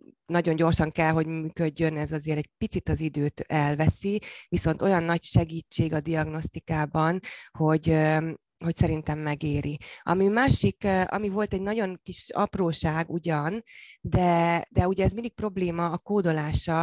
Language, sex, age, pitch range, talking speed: Hungarian, female, 30-49, 155-180 Hz, 140 wpm